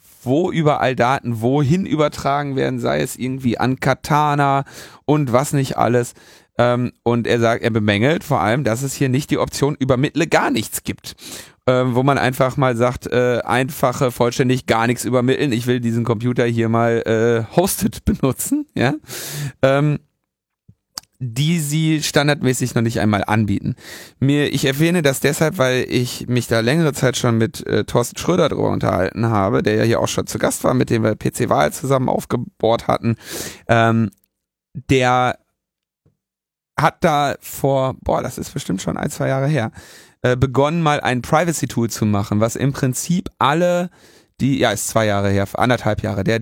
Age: 40-59